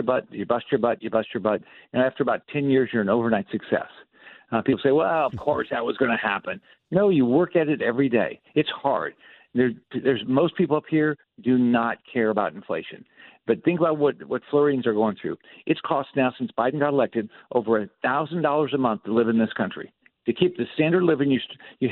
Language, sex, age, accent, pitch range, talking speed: English, male, 50-69, American, 120-155 Hz, 225 wpm